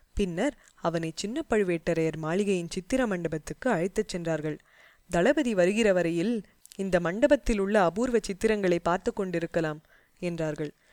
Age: 20-39